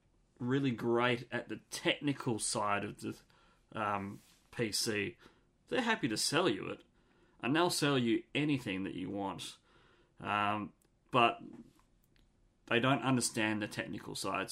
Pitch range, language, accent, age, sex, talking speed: 105-130 Hz, English, Australian, 30-49, male, 130 wpm